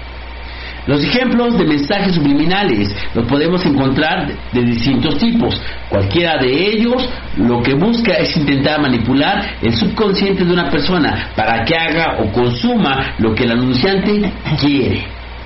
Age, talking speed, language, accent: 50-69, 135 wpm, Spanish, Mexican